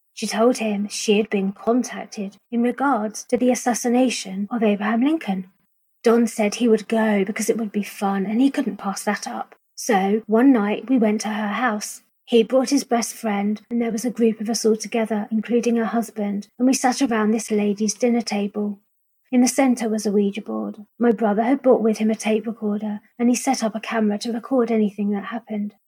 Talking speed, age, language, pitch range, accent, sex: 210 wpm, 30-49, English, 210-245 Hz, British, female